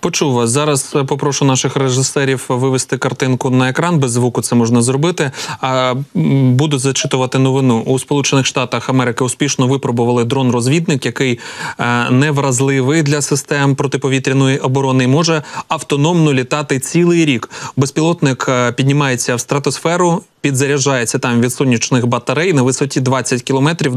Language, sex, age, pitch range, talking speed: Ukrainian, male, 30-49, 130-150 Hz, 125 wpm